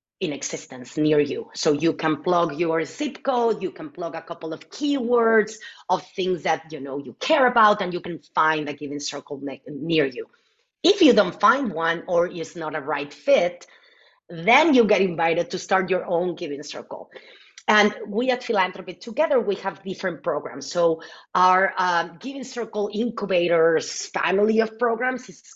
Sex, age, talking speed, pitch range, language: female, 30-49, 175 wpm, 165-225 Hz, English